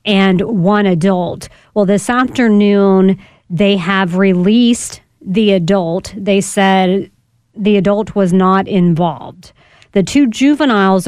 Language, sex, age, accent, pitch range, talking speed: English, female, 40-59, American, 195-230 Hz, 115 wpm